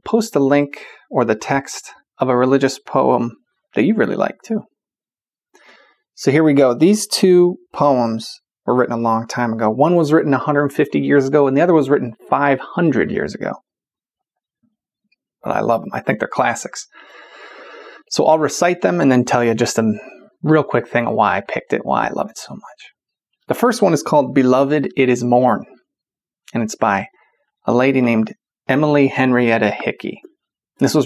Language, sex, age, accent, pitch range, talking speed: English, male, 30-49, American, 125-165 Hz, 180 wpm